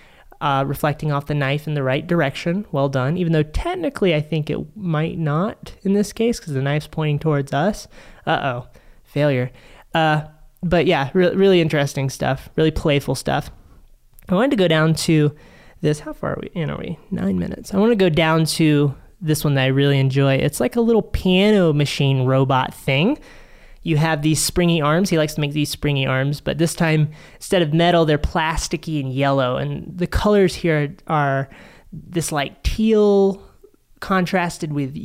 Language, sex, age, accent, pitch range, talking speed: English, male, 20-39, American, 145-180 Hz, 185 wpm